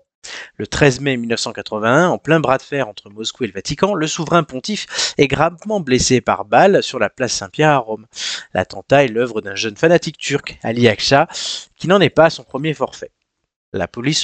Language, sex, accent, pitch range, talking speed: French, male, French, 110-145 Hz, 200 wpm